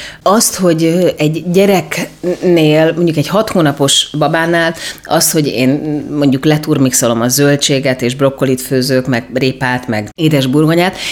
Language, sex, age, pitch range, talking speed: Hungarian, female, 30-49, 130-170 Hz, 125 wpm